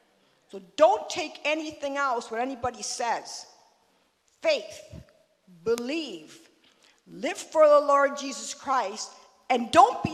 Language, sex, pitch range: English, female, 245-350 Hz